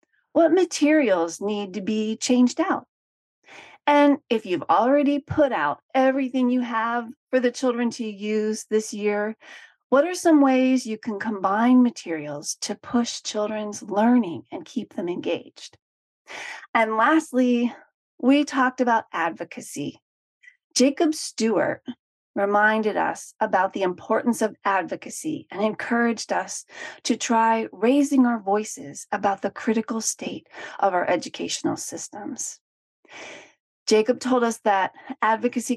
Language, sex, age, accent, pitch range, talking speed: English, female, 40-59, American, 210-275 Hz, 125 wpm